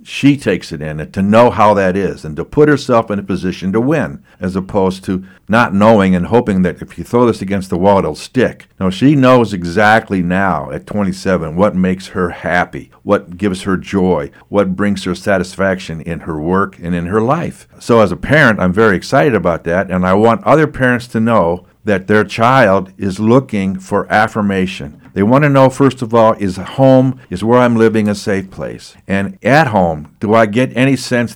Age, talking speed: 60-79, 205 wpm